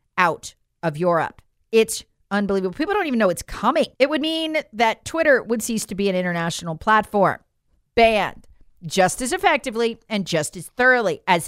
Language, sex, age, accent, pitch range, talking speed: English, female, 40-59, American, 195-265 Hz, 165 wpm